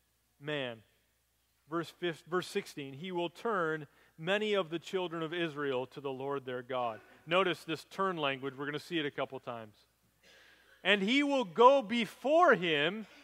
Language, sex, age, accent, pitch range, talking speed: English, male, 40-59, American, 170-240 Hz, 170 wpm